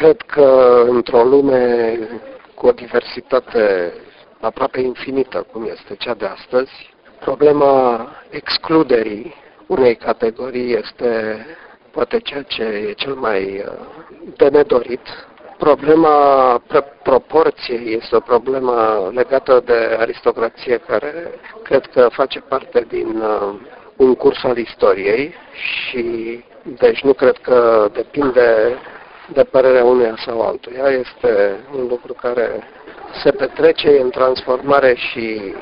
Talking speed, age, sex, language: 110 wpm, 50-69, male, English